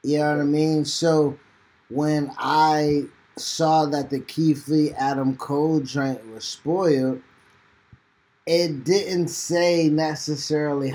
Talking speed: 120 wpm